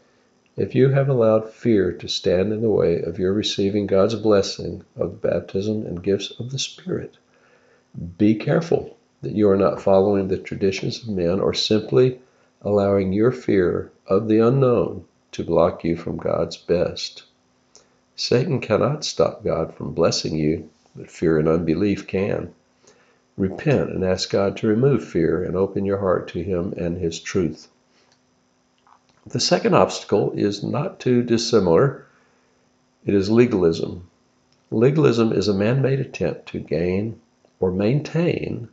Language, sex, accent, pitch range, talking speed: English, male, American, 95-120 Hz, 145 wpm